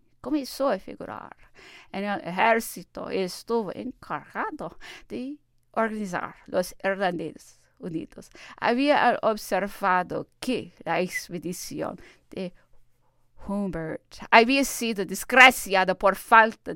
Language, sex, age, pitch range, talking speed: English, female, 50-69, 190-280 Hz, 90 wpm